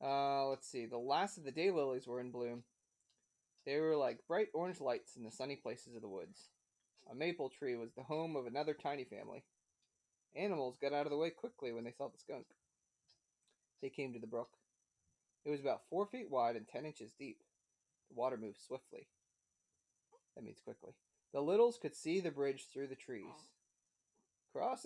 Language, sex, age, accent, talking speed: English, male, 30-49, American, 190 wpm